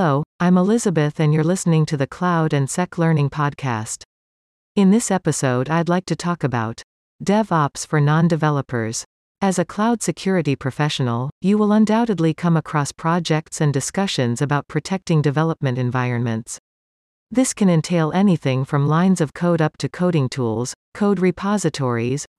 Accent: American